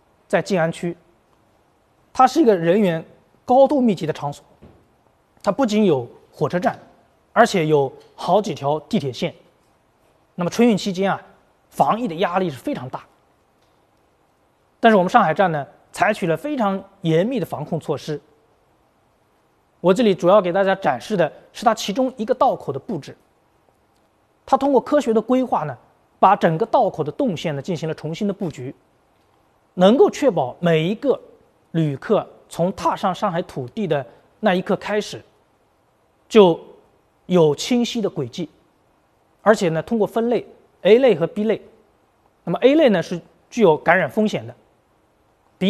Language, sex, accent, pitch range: Chinese, male, native, 160-220 Hz